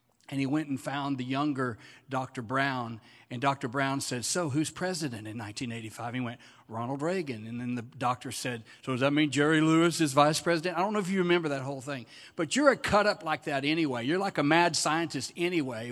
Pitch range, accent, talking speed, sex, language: 115-150 Hz, American, 220 wpm, male, English